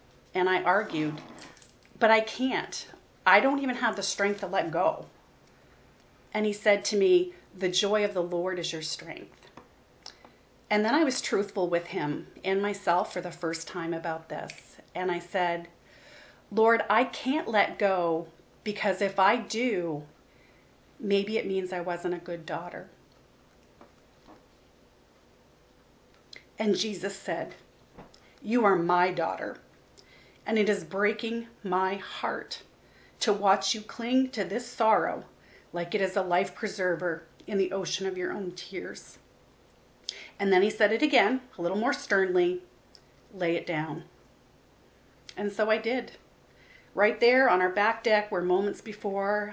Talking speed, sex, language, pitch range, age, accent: 150 wpm, female, English, 170-215 Hz, 40-59, American